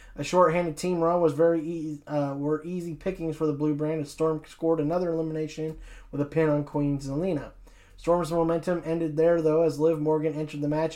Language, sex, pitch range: English, male, 145-160 Hz